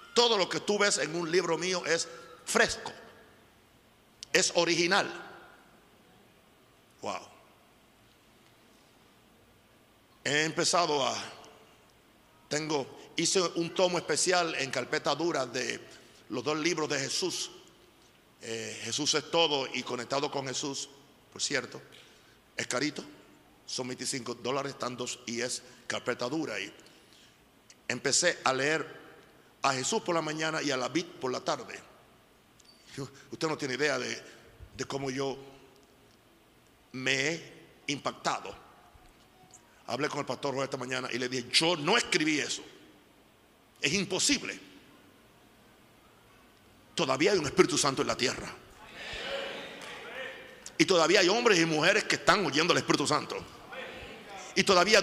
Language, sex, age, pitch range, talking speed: Spanish, male, 50-69, 130-170 Hz, 125 wpm